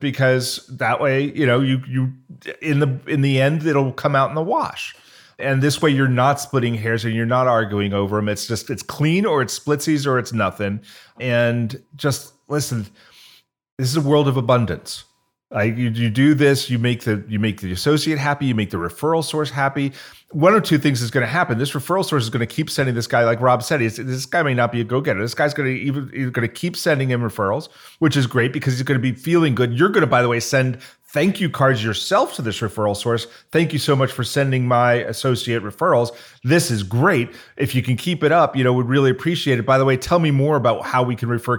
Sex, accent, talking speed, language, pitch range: male, American, 245 wpm, English, 120-145 Hz